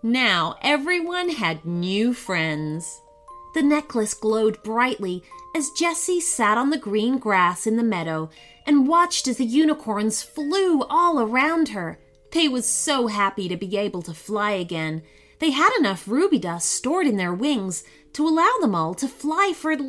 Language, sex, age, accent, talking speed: English, female, 30-49, American, 165 wpm